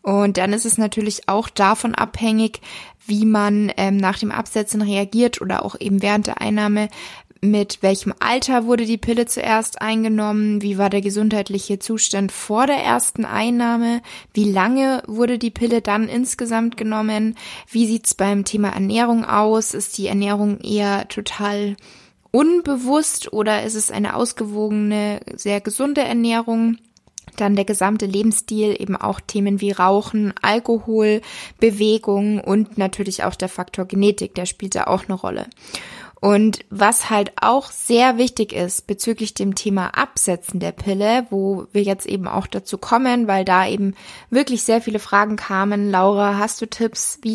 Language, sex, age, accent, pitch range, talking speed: German, female, 20-39, German, 200-225 Hz, 155 wpm